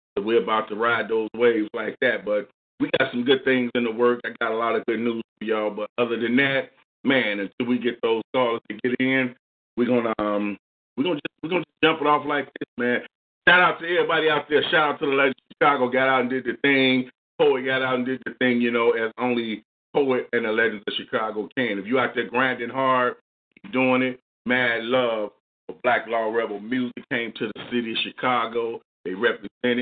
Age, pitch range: 40-59, 115-130 Hz